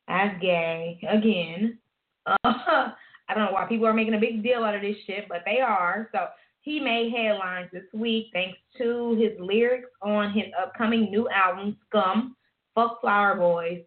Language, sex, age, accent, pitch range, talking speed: English, female, 20-39, American, 185-225 Hz, 175 wpm